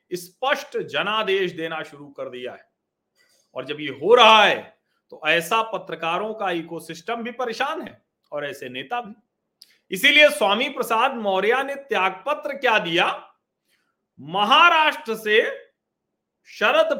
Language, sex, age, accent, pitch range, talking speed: Hindi, male, 40-59, native, 185-245 Hz, 125 wpm